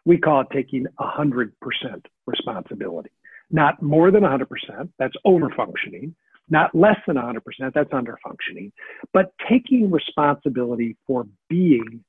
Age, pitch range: 60-79, 140-200 Hz